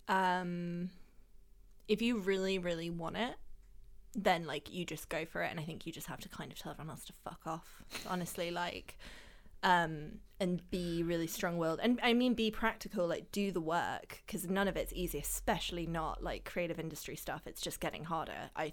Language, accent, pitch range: English, British, 170-200 Hz